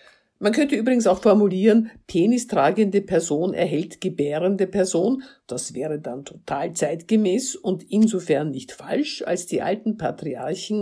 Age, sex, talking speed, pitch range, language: 50-69, female, 130 wpm, 160-220 Hz, German